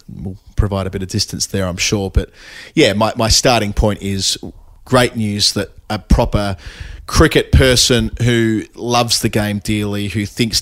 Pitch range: 95-105 Hz